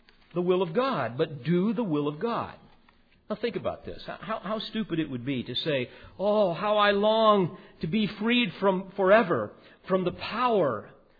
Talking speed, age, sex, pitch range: 180 wpm, 50-69, male, 150-210 Hz